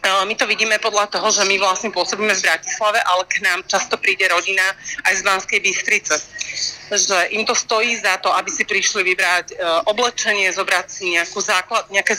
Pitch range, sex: 185-215 Hz, female